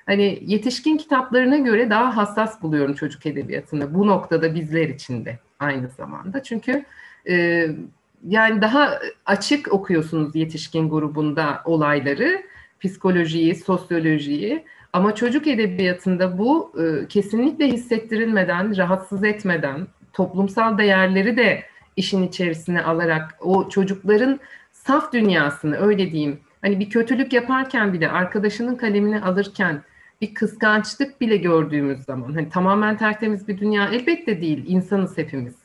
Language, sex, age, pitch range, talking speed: Turkish, female, 50-69, 165-245 Hz, 120 wpm